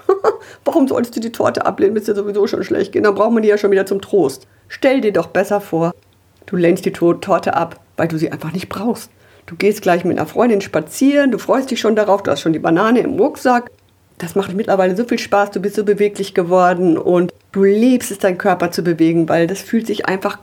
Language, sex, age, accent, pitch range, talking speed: German, female, 50-69, German, 175-245 Hz, 230 wpm